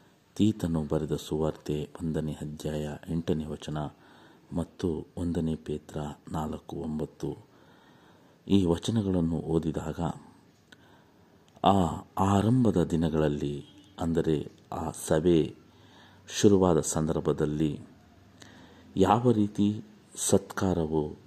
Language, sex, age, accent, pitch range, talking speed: Kannada, male, 50-69, native, 75-95 Hz, 70 wpm